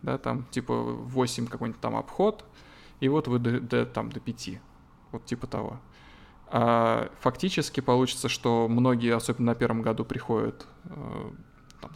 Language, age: Russian, 20-39